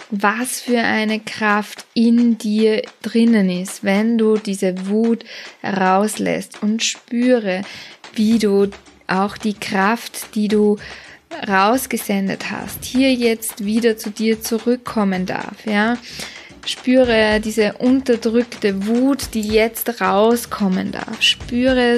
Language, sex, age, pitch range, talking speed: German, female, 20-39, 200-230 Hz, 110 wpm